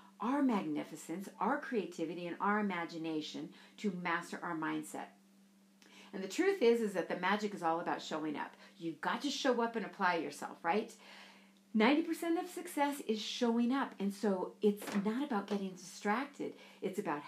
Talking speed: 165 wpm